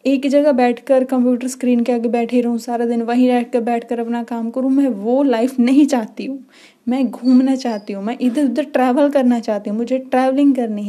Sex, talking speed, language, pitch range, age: female, 205 wpm, Hindi, 235-270 Hz, 10-29